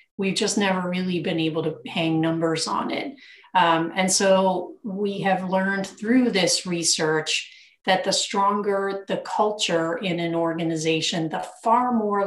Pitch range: 165-195 Hz